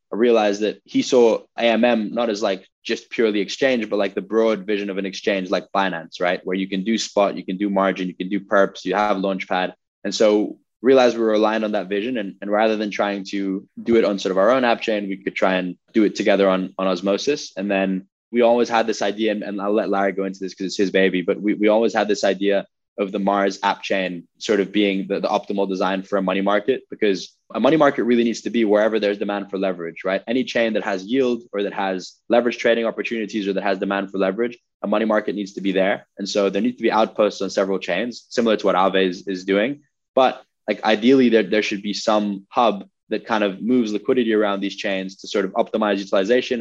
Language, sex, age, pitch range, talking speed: English, male, 10-29, 95-110 Hz, 245 wpm